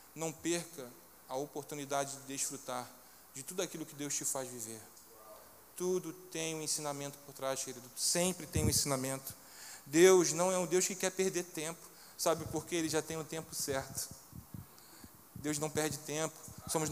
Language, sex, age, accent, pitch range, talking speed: Portuguese, male, 20-39, Brazilian, 140-175 Hz, 170 wpm